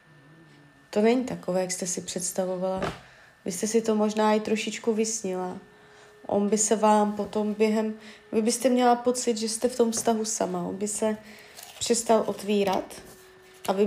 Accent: native